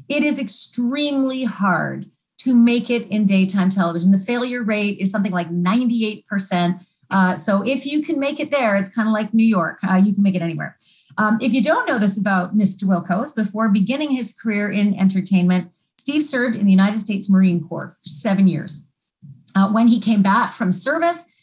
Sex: female